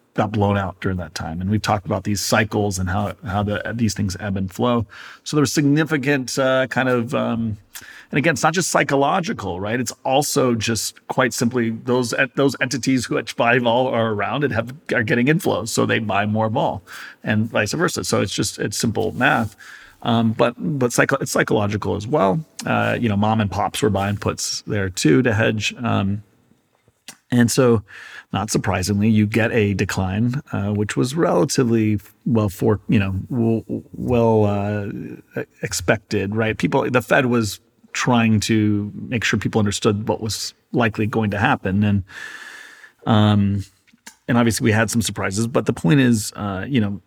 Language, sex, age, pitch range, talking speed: English, male, 40-59, 100-120 Hz, 180 wpm